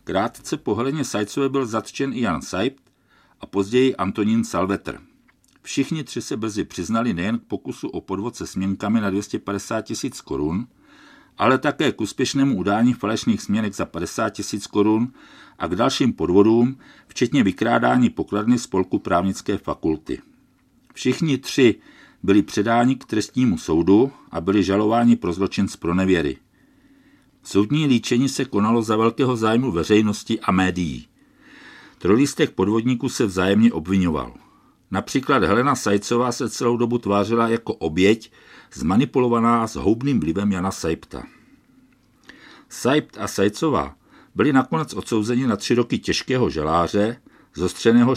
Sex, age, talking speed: male, 50-69, 135 wpm